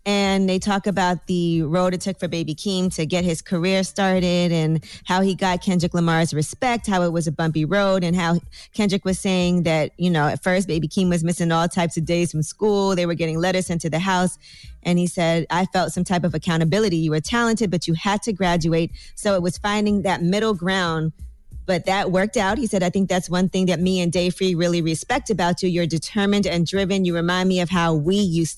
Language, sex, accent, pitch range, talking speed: English, female, American, 170-195 Hz, 235 wpm